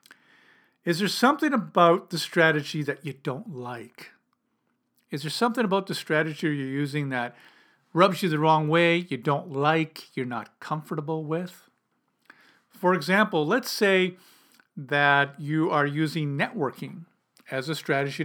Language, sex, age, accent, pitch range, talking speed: English, male, 50-69, American, 140-185 Hz, 140 wpm